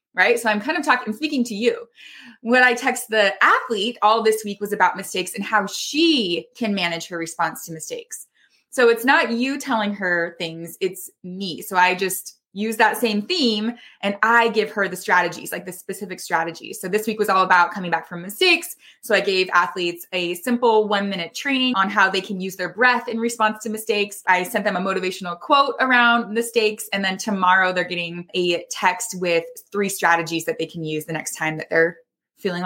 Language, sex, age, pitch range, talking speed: English, female, 20-39, 190-255 Hz, 210 wpm